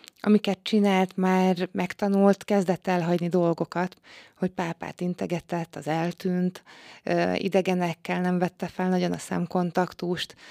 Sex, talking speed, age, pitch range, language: female, 110 wpm, 20-39, 170-195 Hz, Hungarian